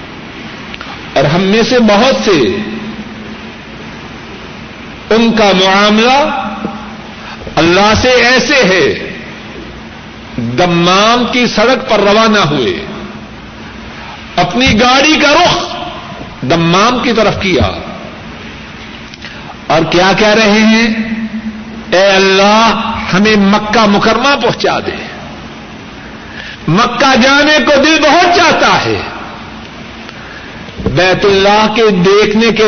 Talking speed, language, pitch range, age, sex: 90 wpm, Urdu, 205-255 Hz, 60-79, male